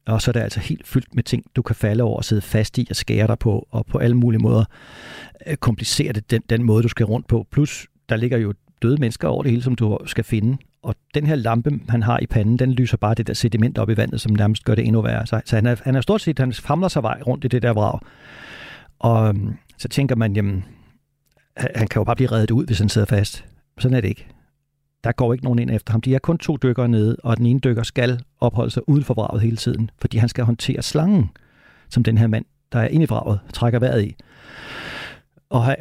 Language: Danish